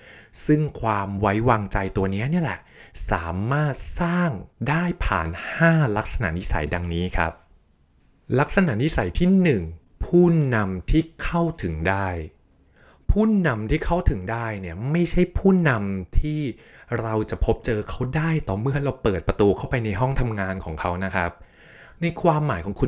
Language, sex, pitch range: Thai, male, 95-140 Hz